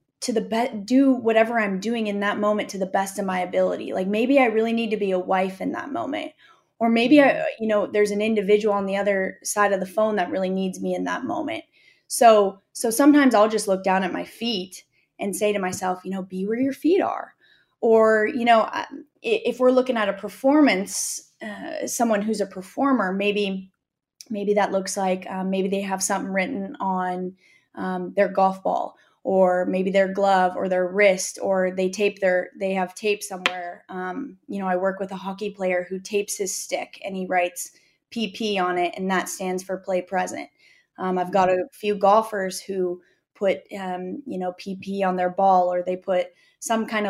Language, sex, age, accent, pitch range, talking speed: English, female, 20-39, American, 185-220 Hz, 205 wpm